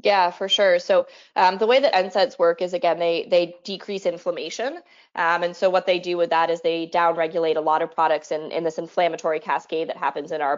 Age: 20-39